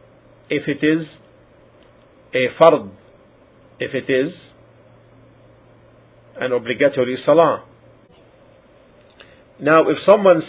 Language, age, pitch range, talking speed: English, 50-69, 125-150 Hz, 80 wpm